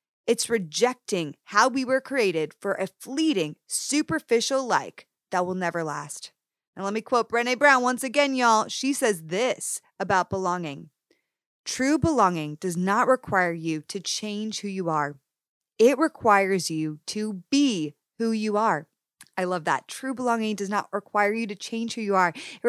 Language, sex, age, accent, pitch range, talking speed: English, female, 30-49, American, 185-250 Hz, 165 wpm